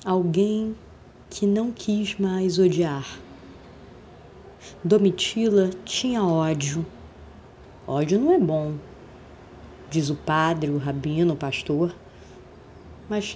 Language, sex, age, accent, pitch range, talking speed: Portuguese, female, 20-39, Brazilian, 155-210 Hz, 95 wpm